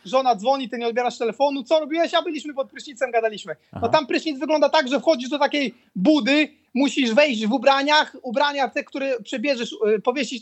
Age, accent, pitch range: 30-49, native, 255-295 Hz